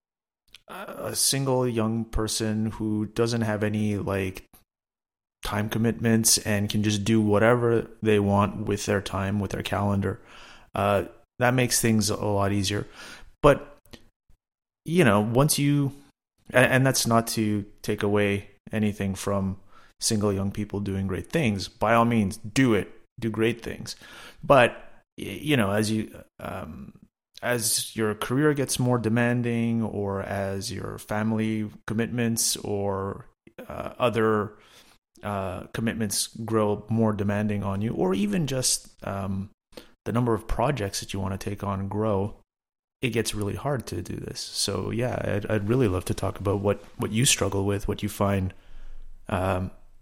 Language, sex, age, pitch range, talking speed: English, male, 30-49, 100-115 Hz, 150 wpm